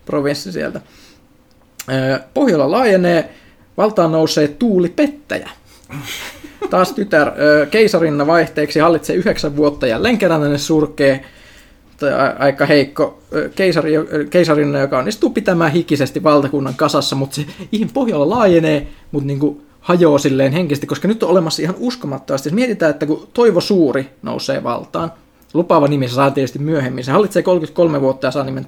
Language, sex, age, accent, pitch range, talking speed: Finnish, male, 20-39, native, 145-185 Hz, 130 wpm